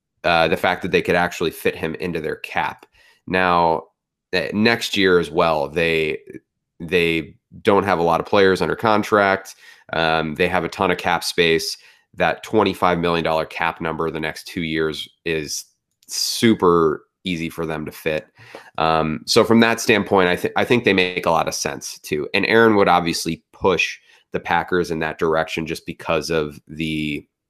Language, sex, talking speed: English, male, 180 wpm